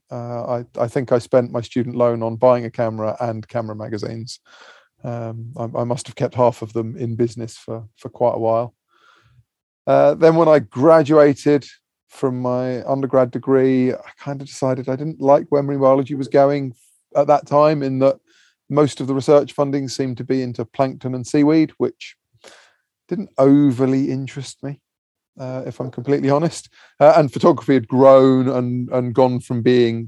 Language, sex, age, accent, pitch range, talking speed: English, male, 30-49, British, 120-135 Hz, 180 wpm